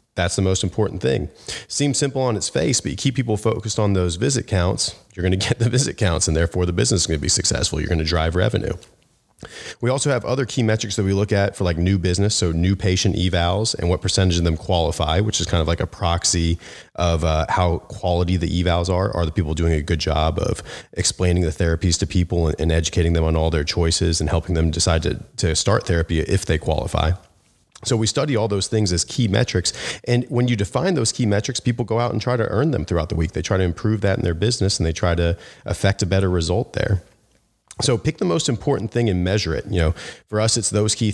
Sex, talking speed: male, 245 wpm